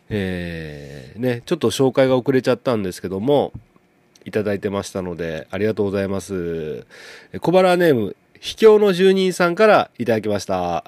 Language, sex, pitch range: Japanese, male, 105-140 Hz